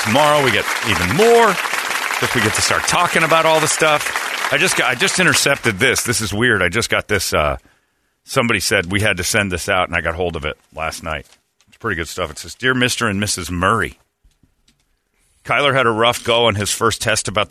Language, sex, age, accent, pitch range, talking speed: English, male, 40-59, American, 95-125 Hz, 230 wpm